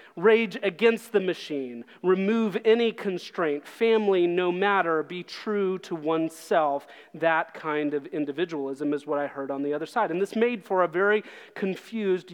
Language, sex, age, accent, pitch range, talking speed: English, male, 30-49, American, 165-205 Hz, 160 wpm